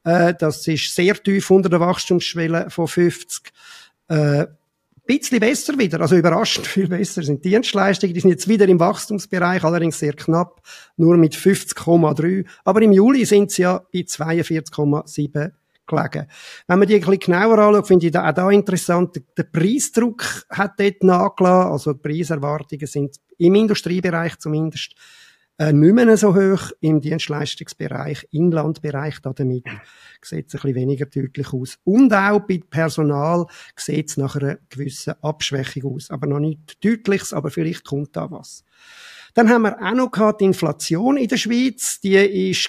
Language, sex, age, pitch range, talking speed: German, male, 50-69, 155-200 Hz, 160 wpm